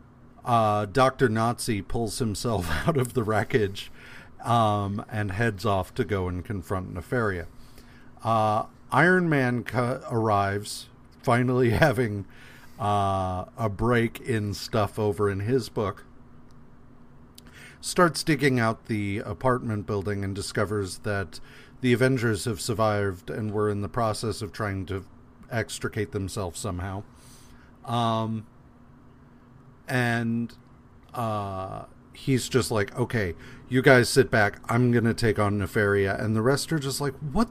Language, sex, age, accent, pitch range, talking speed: English, male, 40-59, American, 105-130 Hz, 130 wpm